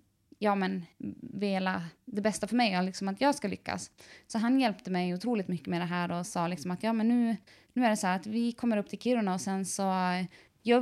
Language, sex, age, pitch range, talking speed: Swedish, female, 20-39, 190-235 Hz, 240 wpm